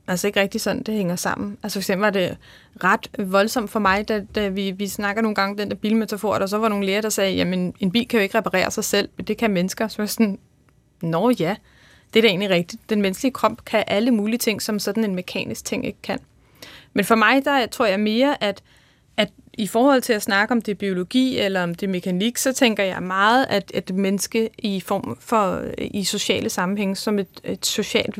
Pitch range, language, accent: 195-225 Hz, Danish, native